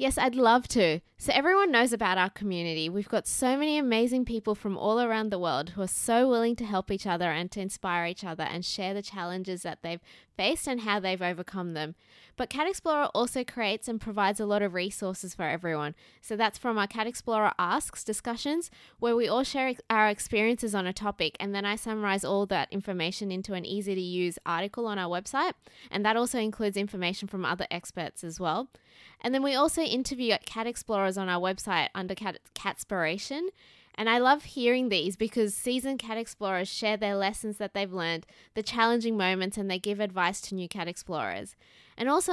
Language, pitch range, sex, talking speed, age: English, 185-235 Hz, female, 200 wpm, 20-39